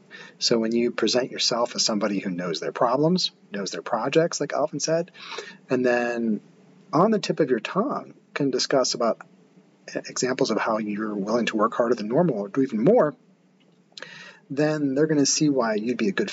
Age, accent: 40-59, American